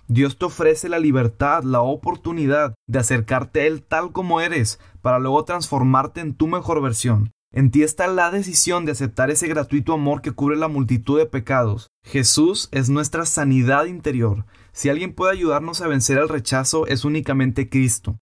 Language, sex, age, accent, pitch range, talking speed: Spanish, male, 20-39, Mexican, 120-150 Hz, 175 wpm